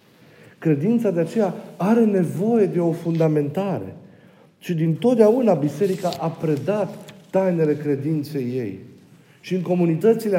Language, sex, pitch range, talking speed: Romanian, male, 155-195 Hz, 115 wpm